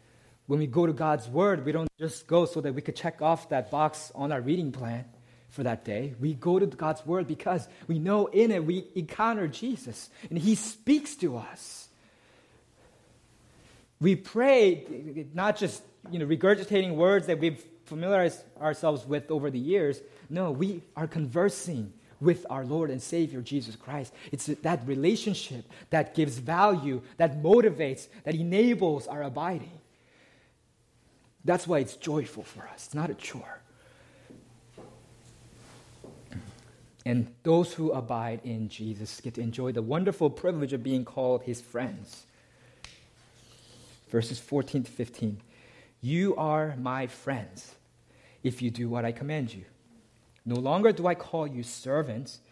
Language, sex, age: English, male, 30-49